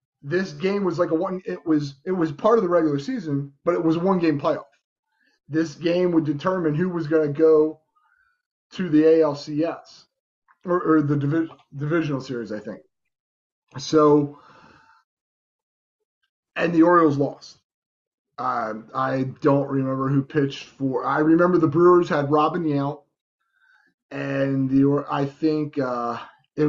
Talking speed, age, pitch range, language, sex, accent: 150 wpm, 30-49, 145-180 Hz, English, male, American